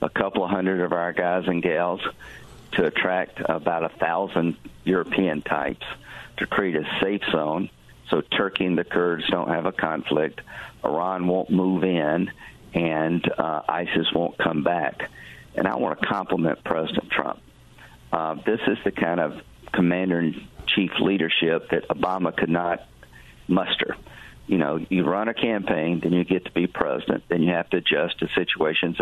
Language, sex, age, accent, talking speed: English, male, 50-69, American, 165 wpm